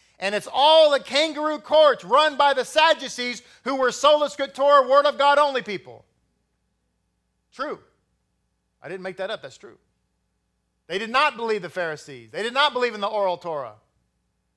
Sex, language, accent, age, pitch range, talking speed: male, English, American, 40-59, 175-270 Hz, 170 wpm